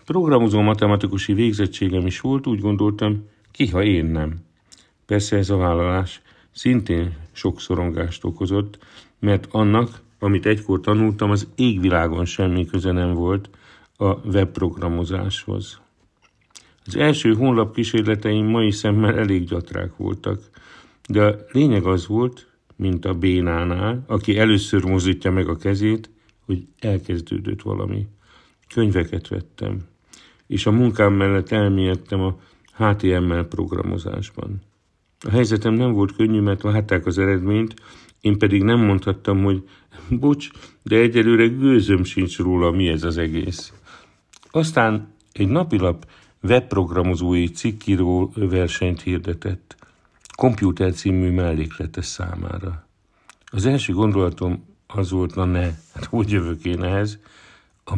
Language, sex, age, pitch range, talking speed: Hungarian, male, 50-69, 90-110 Hz, 120 wpm